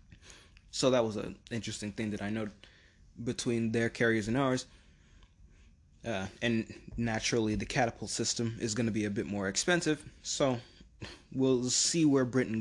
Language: English